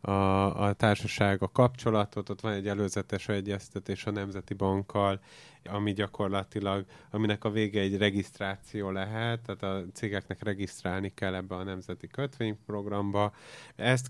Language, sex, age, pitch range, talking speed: Hungarian, male, 30-49, 100-115 Hz, 130 wpm